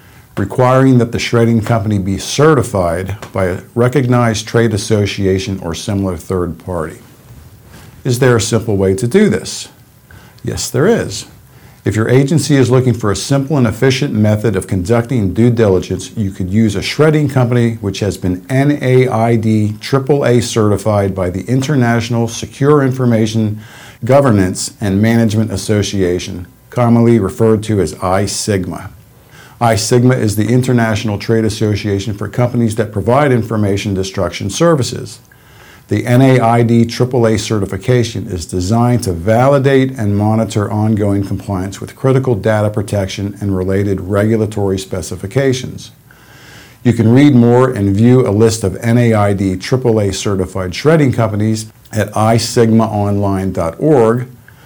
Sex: male